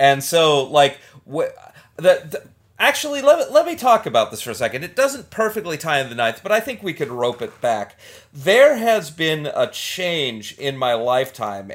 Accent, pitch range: American, 135-185 Hz